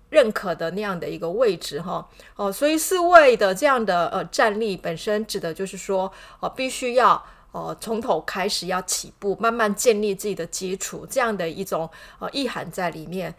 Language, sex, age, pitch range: Chinese, female, 30-49, 185-240 Hz